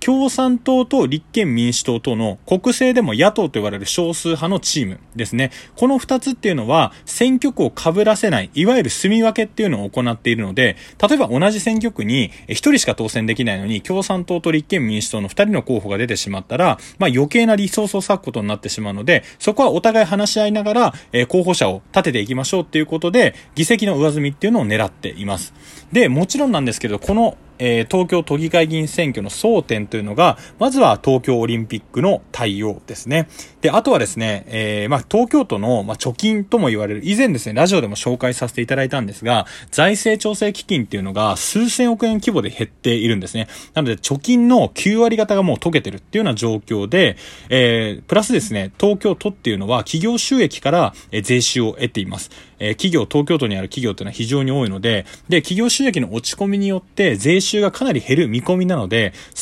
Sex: male